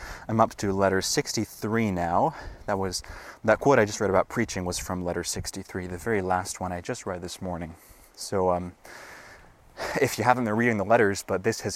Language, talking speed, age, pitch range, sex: English, 205 wpm, 20-39, 95-120 Hz, male